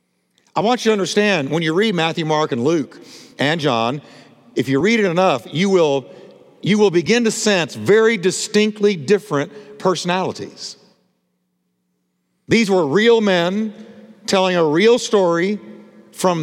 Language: English